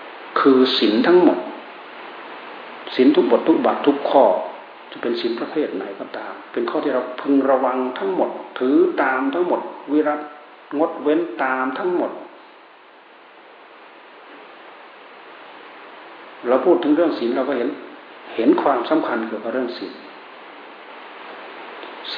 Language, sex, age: Thai, male, 60-79